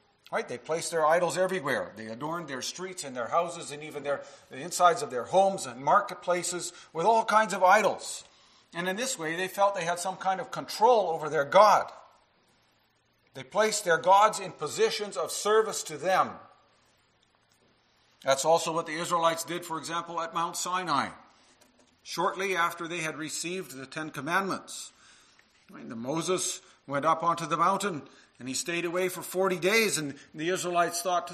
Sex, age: male, 50-69